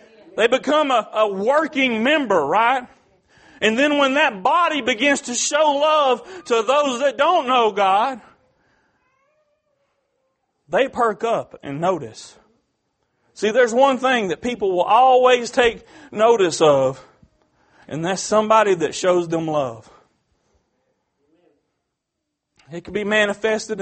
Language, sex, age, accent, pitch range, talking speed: English, male, 40-59, American, 170-250 Hz, 125 wpm